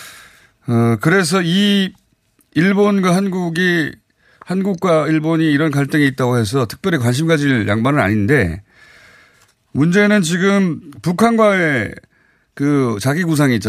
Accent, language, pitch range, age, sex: native, Korean, 110-160 Hz, 30-49, male